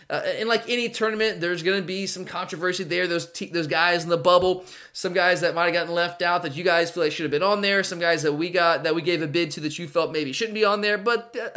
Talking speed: 295 wpm